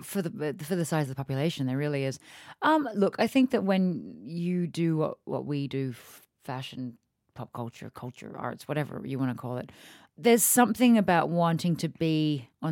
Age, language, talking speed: 30-49, English, 200 wpm